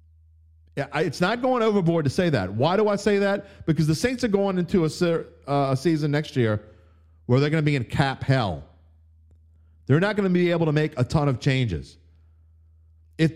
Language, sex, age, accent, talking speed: English, male, 50-69, American, 200 wpm